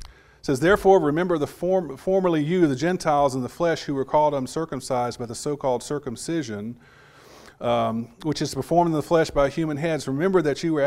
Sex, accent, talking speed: male, American, 200 wpm